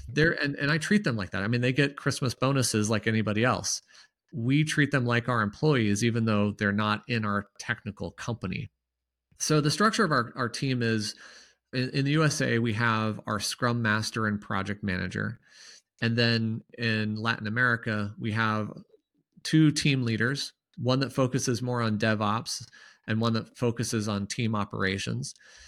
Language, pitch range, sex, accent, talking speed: English, 110-130 Hz, male, American, 170 wpm